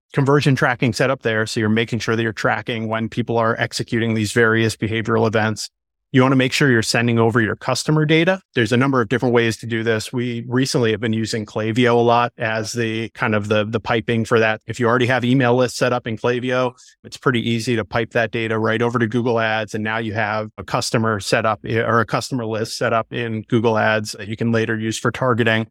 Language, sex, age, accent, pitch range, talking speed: English, male, 30-49, American, 110-125 Hz, 240 wpm